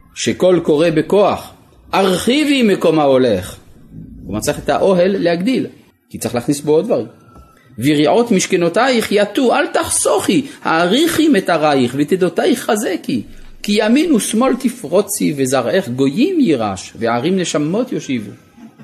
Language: Hebrew